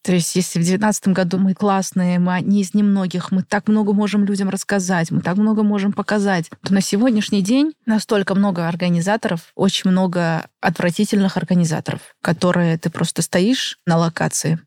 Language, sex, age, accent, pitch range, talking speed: Russian, female, 20-39, native, 175-205 Hz, 165 wpm